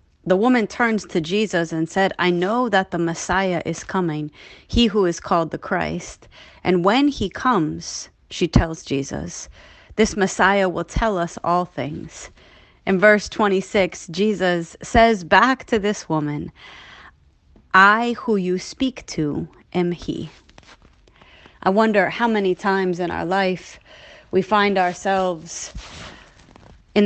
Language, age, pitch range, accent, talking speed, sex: English, 30-49, 175-210 Hz, American, 135 wpm, female